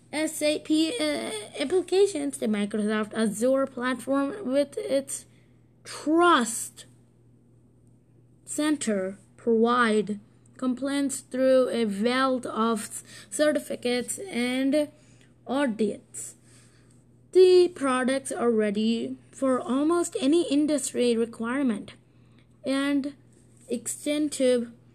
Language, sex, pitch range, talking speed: English, female, 215-280 Hz, 70 wpm